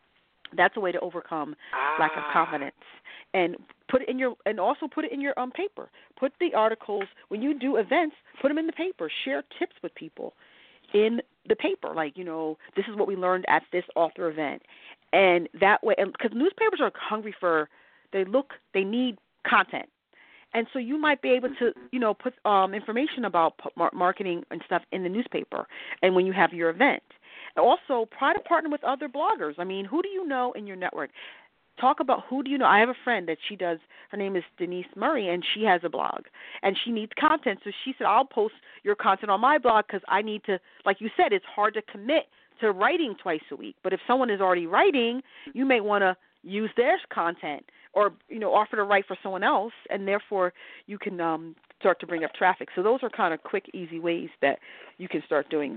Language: English